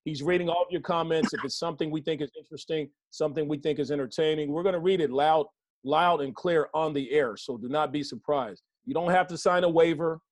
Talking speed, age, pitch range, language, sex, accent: 240 wpm, 40-59, 145-180 Hz, English, male, American